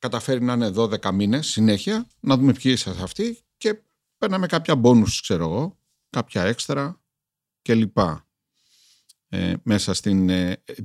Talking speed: 140 wpm